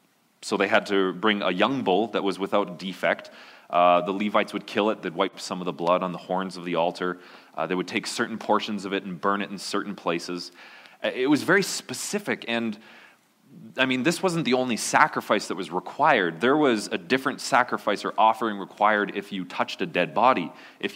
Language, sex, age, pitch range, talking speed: English, male, 20-39, 95-125 Hz, 210 wpm